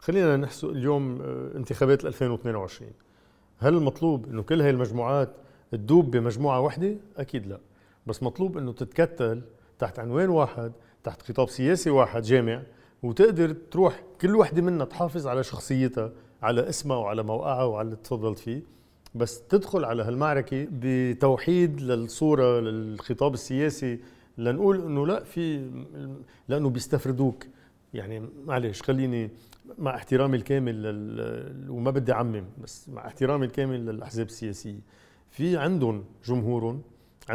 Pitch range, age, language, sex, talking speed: 115-145 Hz, 50-69, Arabic, male, 120 wpm